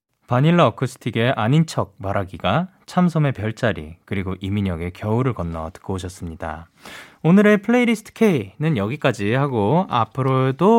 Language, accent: Korean, native